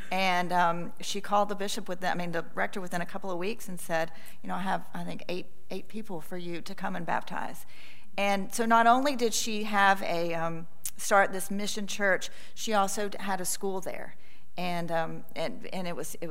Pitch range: 180-235 Hz